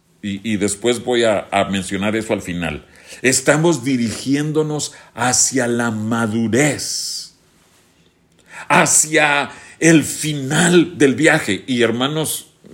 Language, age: Spanish, 50-69